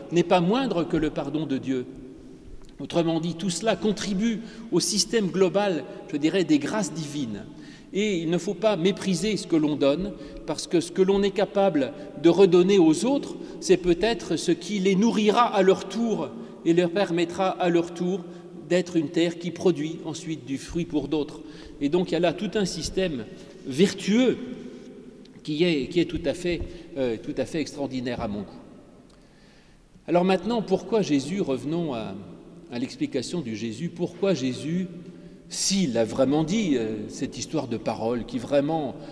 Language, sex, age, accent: French, male, 40-59, French